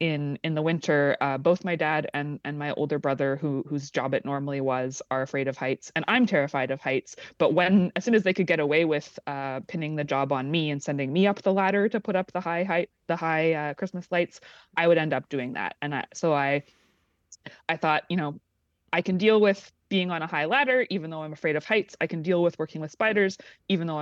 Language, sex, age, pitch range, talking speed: English, female, 20-39, 140-180 Hz, 245 wpm